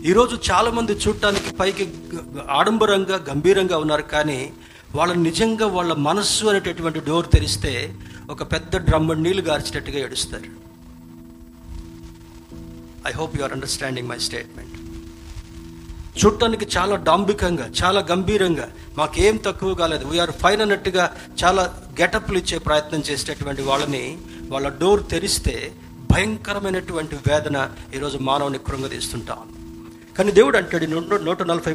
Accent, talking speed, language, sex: native, 110 wpm, Telugu, male